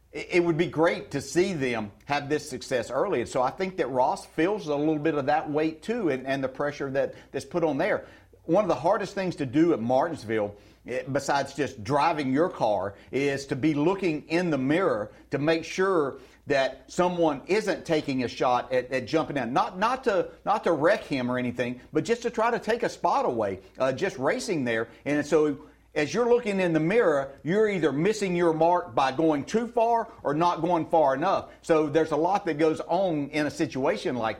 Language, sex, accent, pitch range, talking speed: English, male, American, 130-175 Hz, 215 wpm